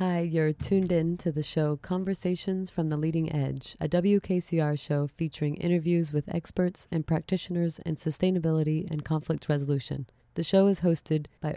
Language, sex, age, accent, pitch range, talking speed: English, female, 30-49, American, 150-170 Hz, 160 wpm